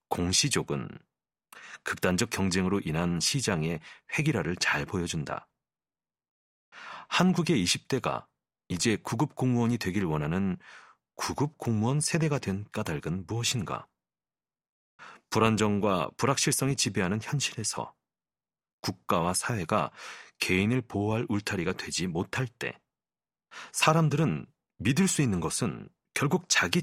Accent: native